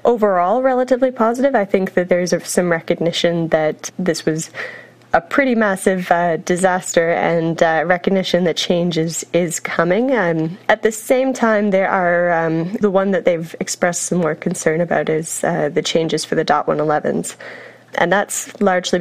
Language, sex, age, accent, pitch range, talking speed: English, female, 20-39, American, 165-190 Hz, 165 wpm